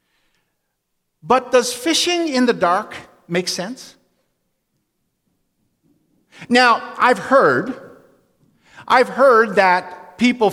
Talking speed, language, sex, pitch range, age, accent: 85 wpm, English, male, 165-220 Hz, 50-69, American